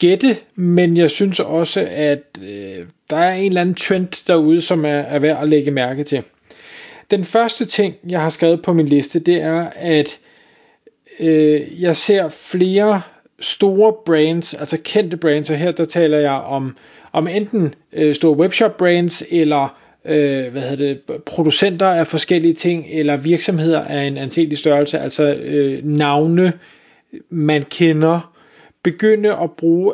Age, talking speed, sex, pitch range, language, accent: 30-49, 155 wpm, male, 150-185 Hz, Danish, native